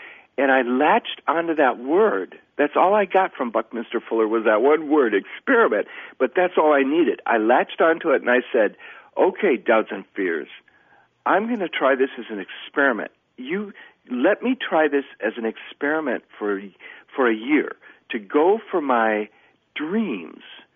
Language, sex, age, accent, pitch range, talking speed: English, male, 60-79, American, 115-190 Hz, 170 wpm